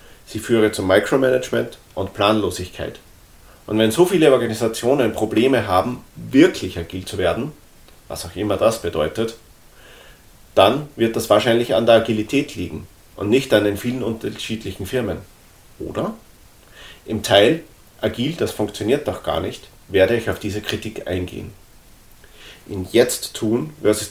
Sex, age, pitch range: male, 40-59, 100-115 Hz